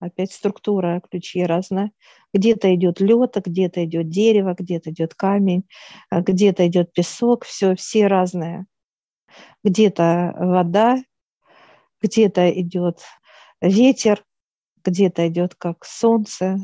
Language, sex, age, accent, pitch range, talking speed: Russian, female, 50-69, native, 180-205 Hz, 100 wpm